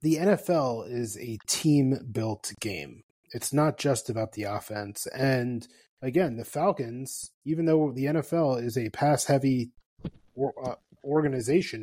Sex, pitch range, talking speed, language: male, 115-145 Hz, 120 wpm, English